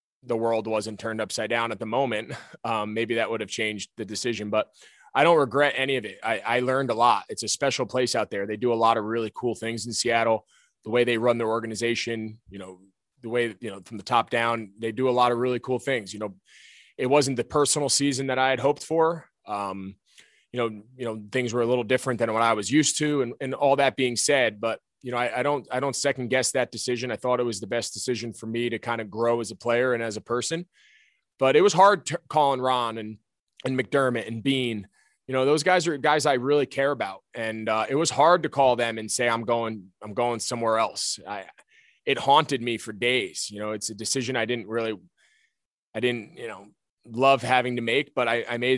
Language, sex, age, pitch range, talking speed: English, male, 20-39, 110-130 Hz, 245 wpm